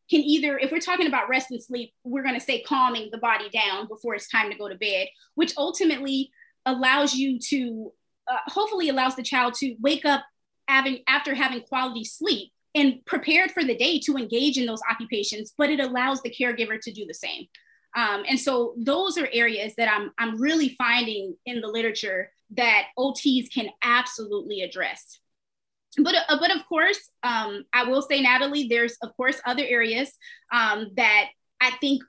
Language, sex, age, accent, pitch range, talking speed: English, female, 20-39, American, 230-285 Hz, 185 wpm